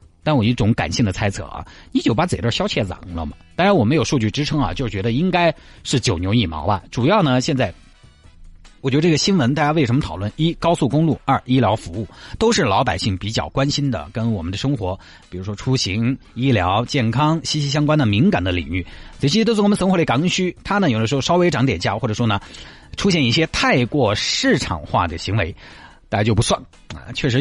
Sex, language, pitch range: male, Chinese, 105-150 Hz